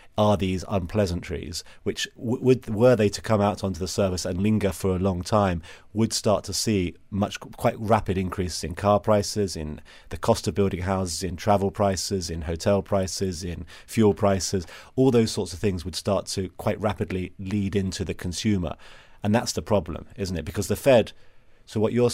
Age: 30-49